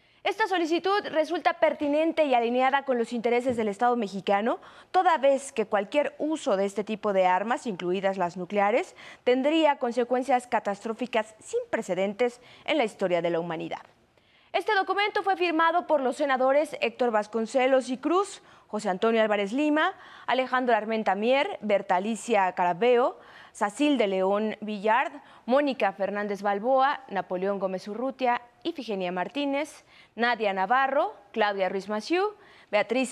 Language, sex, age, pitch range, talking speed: Spanish, female, 20-39, 210-290 Hz, 140 wpm